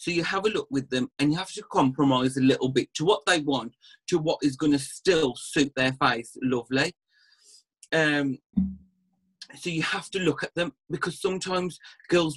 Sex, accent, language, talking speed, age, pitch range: male, British, English, 195 wpm, 30-49, 130-160 Hz